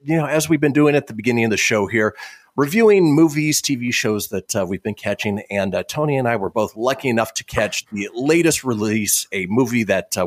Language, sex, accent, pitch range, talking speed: English, male, American, 95-125 Hz, 235 wpm